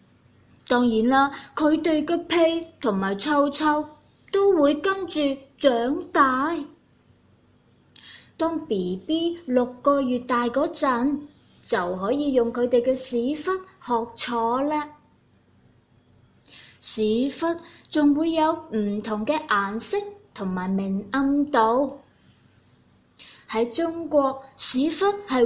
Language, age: Chinese, 20-39